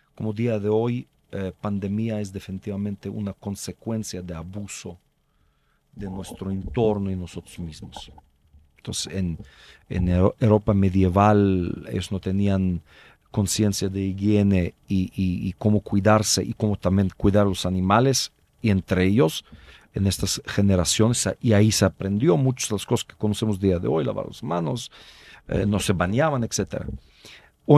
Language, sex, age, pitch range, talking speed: Spanish, male, 50-69, 95-115 Hz, 150 wpm